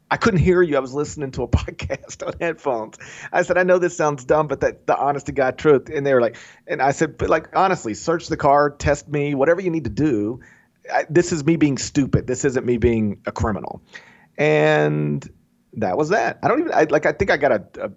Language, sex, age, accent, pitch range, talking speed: English, male, 40-59, American, 115-175 Hz, 250 wpm